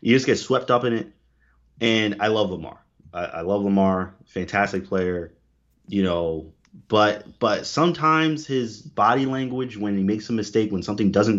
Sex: male